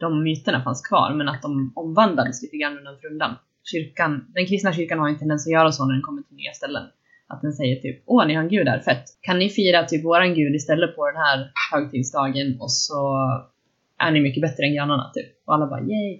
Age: 20-39